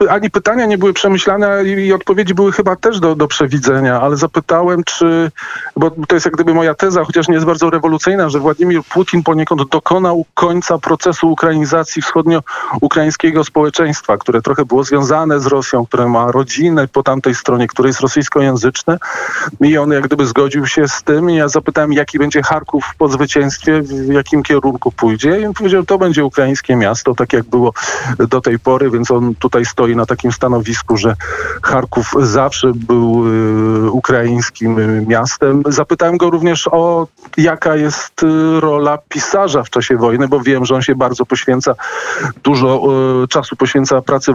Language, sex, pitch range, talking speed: Polish, male, 125-165 Hz, 165 wpm